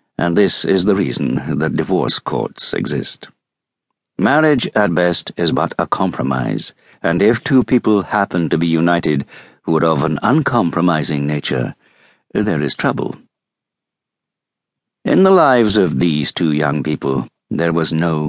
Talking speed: 145 wpm